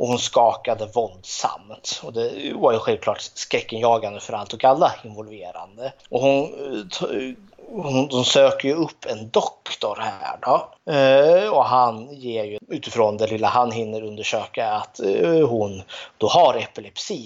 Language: Swedish